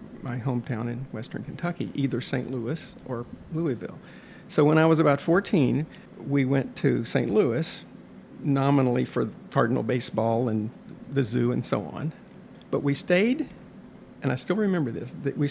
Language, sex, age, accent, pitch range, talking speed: English, male, 50-69, American, 130-175 Hz, 160 wpm